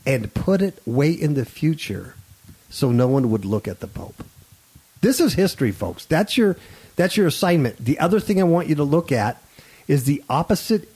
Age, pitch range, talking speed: 50-69, 110-170 Hz, 195 wpm